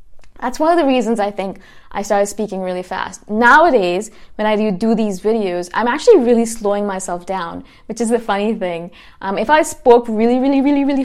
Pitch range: 190-230 Hz